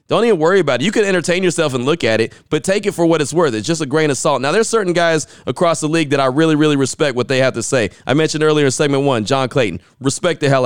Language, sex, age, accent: English, male, 30-49, American